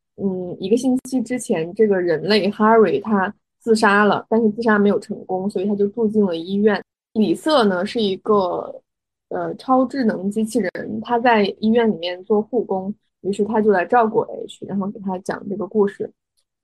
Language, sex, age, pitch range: Chinese, female, 20-39, 200-235 Hz